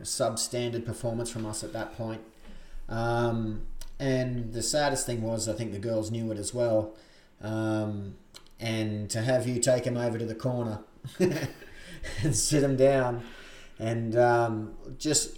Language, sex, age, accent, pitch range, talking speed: English, male, 30-49, Australian, 110-120 Hz, 155 wpm